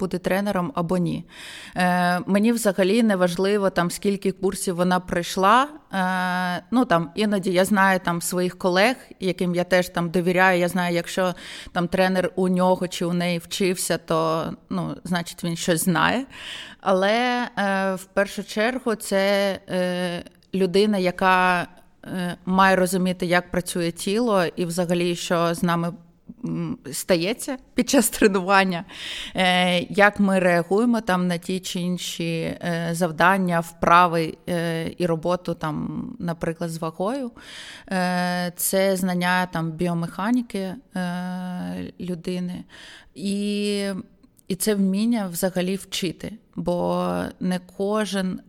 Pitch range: 175-195 Hz